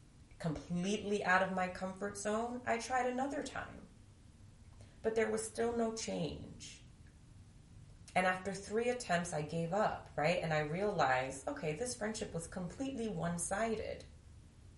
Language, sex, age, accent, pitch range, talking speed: English, female, 30-49, American, 130-215 Hz, 135 wpm